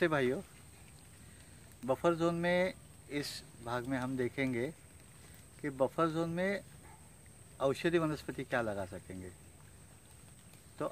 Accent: native